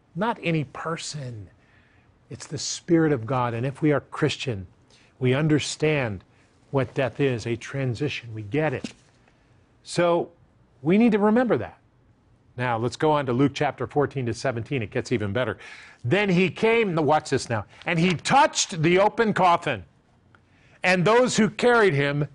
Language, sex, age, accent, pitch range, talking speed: English, male, 50-69, American, 125-205 Hz, 160 wpm